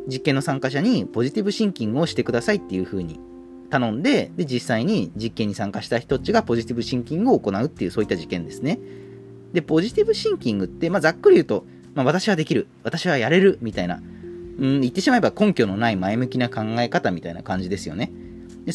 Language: Japanese